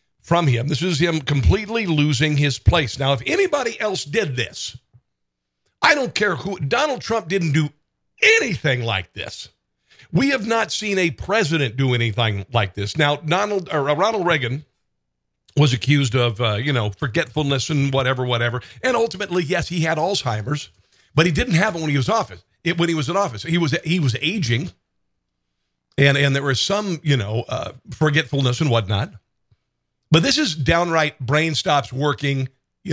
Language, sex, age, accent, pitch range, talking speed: English, male, 50-69, American, 120-170 Hz, 175 wpm